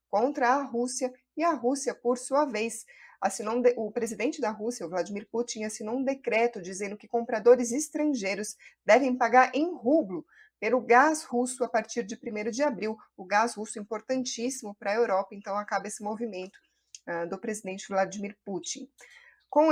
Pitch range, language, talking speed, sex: 205-255 Hz, Portuguese, 165 wpm, female